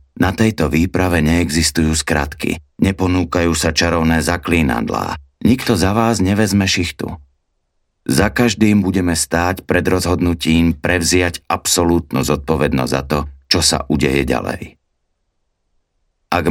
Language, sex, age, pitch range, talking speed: Slovak, male, 50-69, 75-90 Hz, 110 wpm